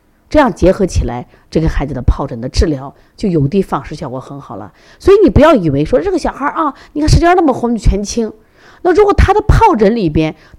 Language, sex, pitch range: Chinese, female, 145-225 Hz